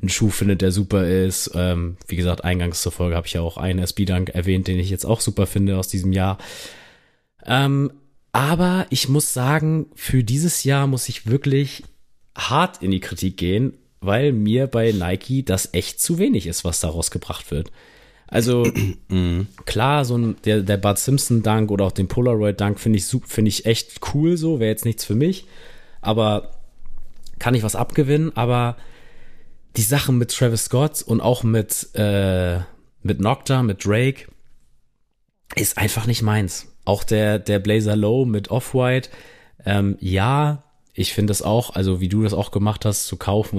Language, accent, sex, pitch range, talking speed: German, German, male, 95-125 Hz, 175 wpm